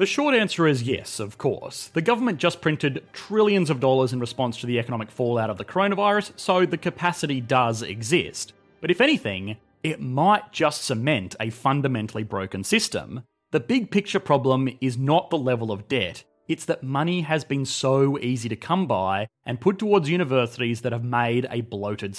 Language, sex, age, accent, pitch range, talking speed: English, male, 30-49, Australian, 120-165 Hz, 185 wpm